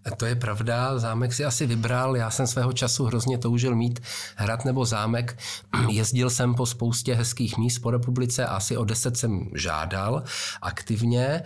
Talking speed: 170 wpm